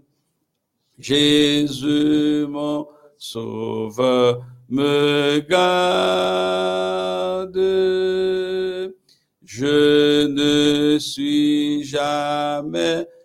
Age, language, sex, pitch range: 60-79, French, male, 145-195 Hz